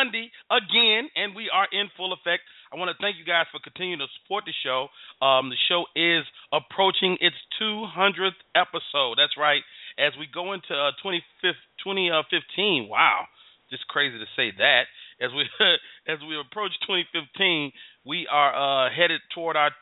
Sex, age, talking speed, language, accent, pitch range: male, 40-59, 165 wpm, English, American, 135-185 Hz